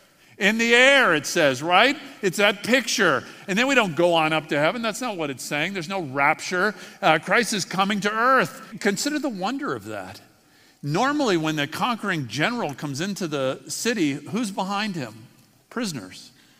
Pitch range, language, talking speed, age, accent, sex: 160-215 Hz, English, 180 wpm, 50-69, American, male